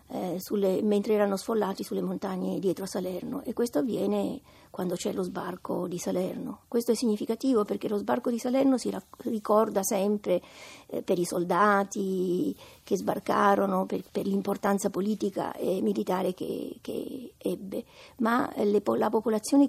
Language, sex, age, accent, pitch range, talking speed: Italian, female, 50-69, native, 195-245 Hz, 155 wpm